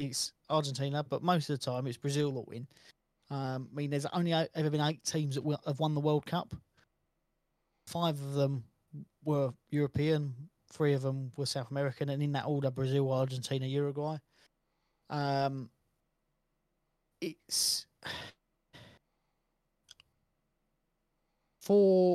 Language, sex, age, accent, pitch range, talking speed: English, male, 20-39, British, 135-155 Hz, 130 wpm